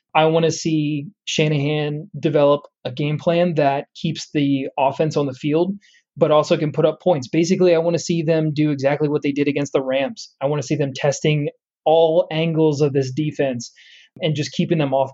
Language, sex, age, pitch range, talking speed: English, male, 20-39, 140-170 Hz, 205 wpm